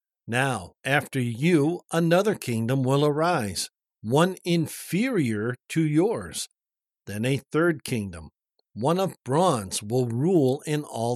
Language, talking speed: English, 120 wpm